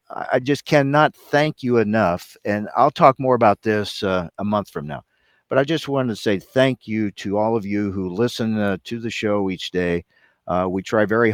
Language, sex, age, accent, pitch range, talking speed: English, male, 50-69, American, 100-125 Hz, 215 wpm